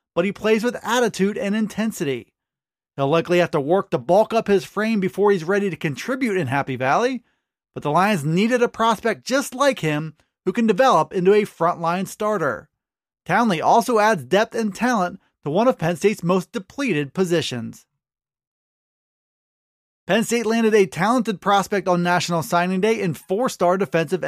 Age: 30-49